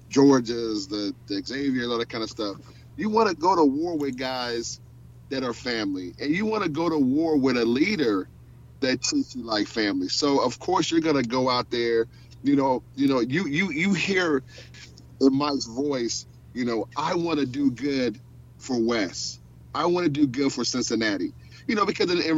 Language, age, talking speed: English, 30-49, 200 wpm